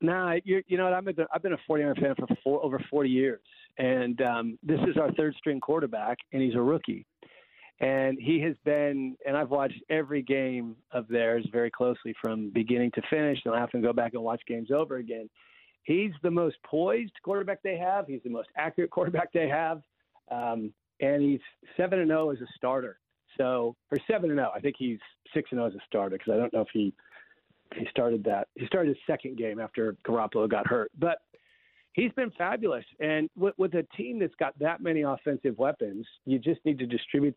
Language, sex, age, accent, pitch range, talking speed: English, male, 40-59, American, 125-160 Hz, 205 wpm